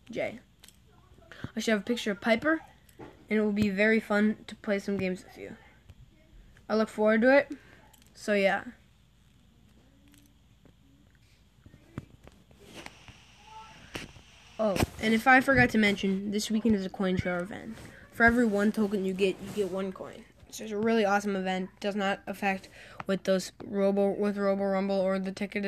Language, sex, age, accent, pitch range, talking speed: English, female, 10-29, American, 190-220 Hz, 160 wpm